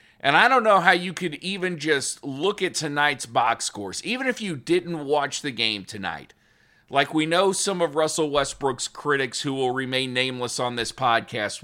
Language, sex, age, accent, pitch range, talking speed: English, male, 40-59, American, 130-170 Hz, 190 wpm